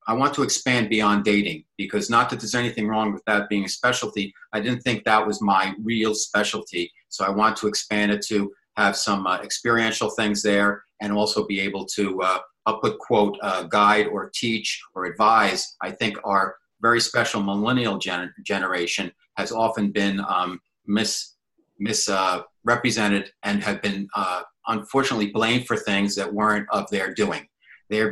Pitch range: 100-110 Hz